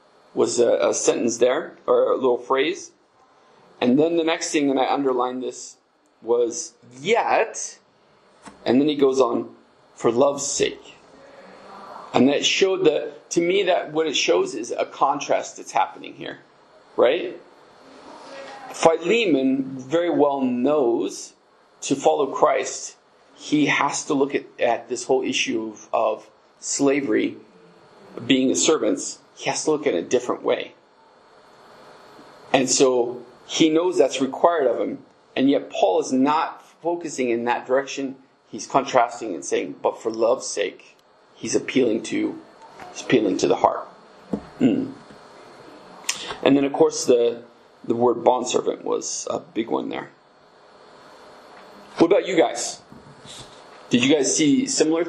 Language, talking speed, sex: English, 145 wpm, male